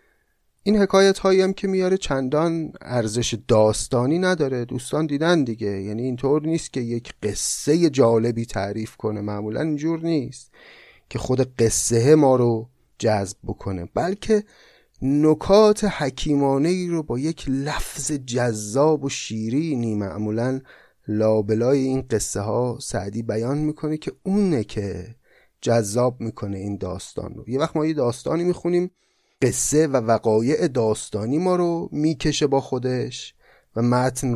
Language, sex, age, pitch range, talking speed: Persian, male, 30-49, 115-155 Hz, 130 wpm